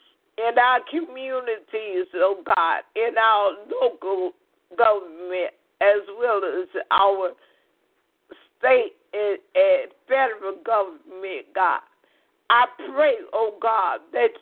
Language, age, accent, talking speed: English, 50-69, American, 100 wpm